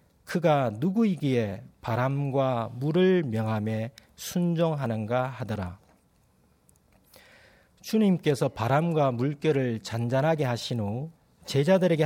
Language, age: Korean, 40-59